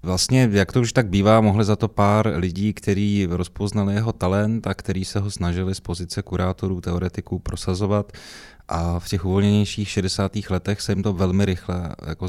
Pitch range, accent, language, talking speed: 90-100 Hz, native, Czech, 180 wpm